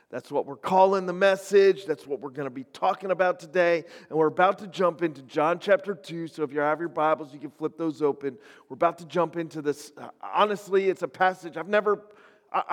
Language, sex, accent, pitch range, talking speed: English, male, American, 150-210 Hz, 225 wpm